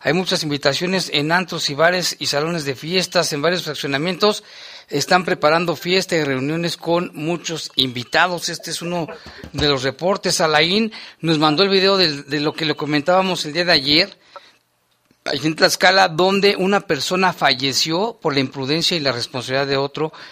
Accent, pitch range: Mexican, 140-175 Hz